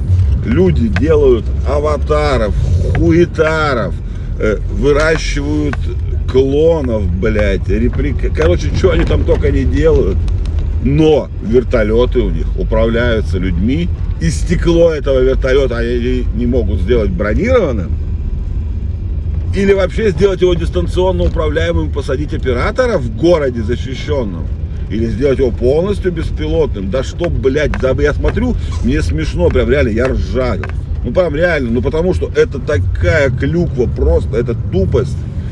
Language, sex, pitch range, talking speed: Russian, male, 85-125 Hz, 115 wpm